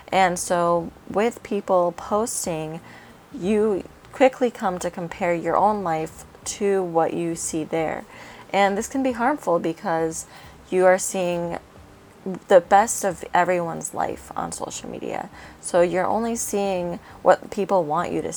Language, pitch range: English, 165-205 Hz